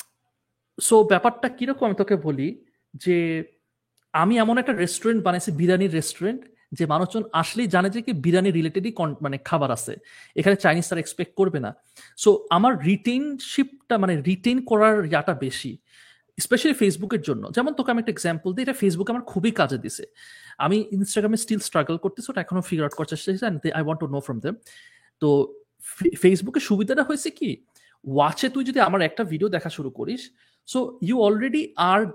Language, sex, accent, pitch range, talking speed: Bengali, male, native, 160-230 Hz, 160 wpm